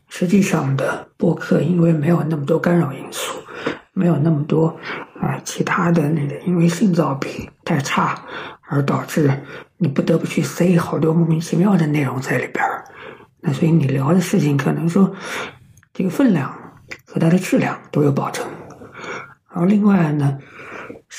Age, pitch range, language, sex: 50-69, 145-185 Hz, Chinese, male